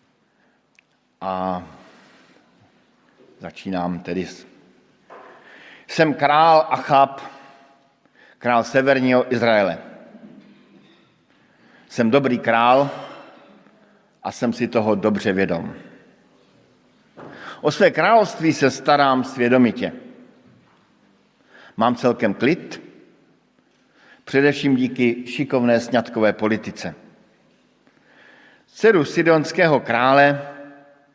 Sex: male